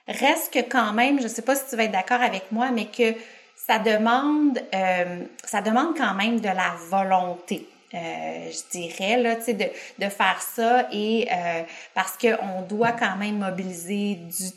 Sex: female